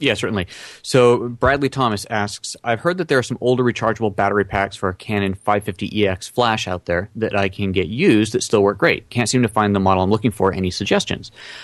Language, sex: English, male